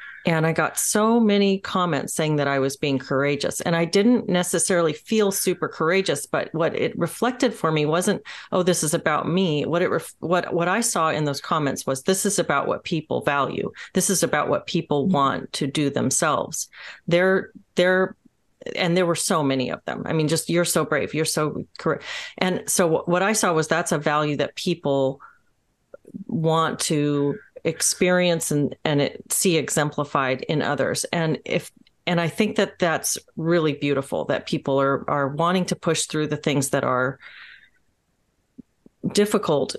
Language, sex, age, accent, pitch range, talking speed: English, female, 40-59, American, 145-185 Hz, 175 wpm